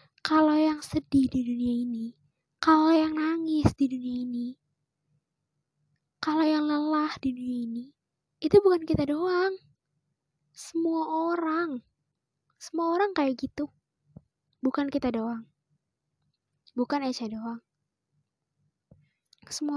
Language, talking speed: Indonesian, 105 wpm